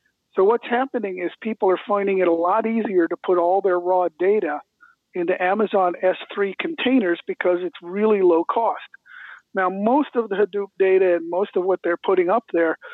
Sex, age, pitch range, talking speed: male, 50-69, 180-260 Hz, 185 wpm